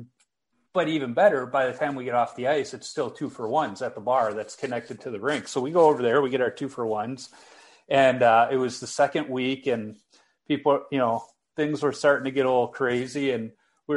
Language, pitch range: English, 120-150 Hz